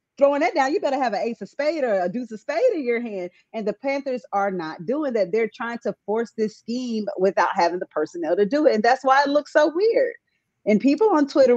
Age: 40-59